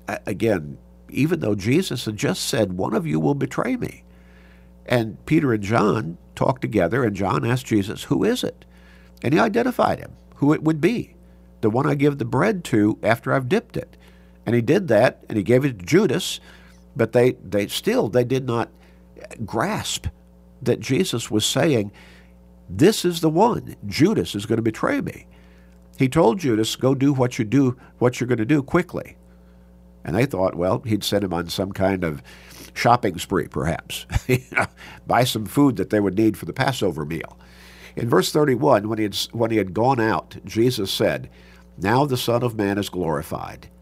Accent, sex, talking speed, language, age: American, male, 190 wpm, English, 50-69